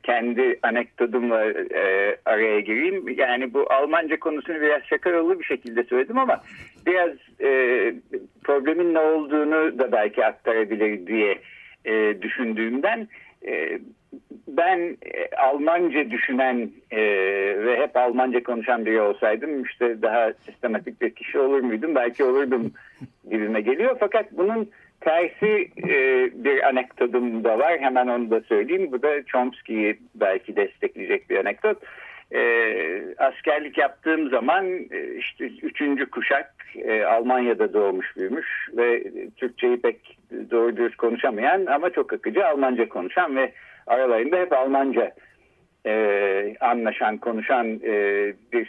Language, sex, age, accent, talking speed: Turkish, male, 60-79, native, 115 wpm